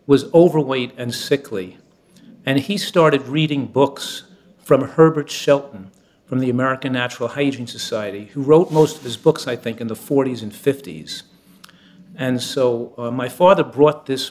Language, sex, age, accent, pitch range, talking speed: English, male, 50-69, American, 120-145 Hz, 160 wpm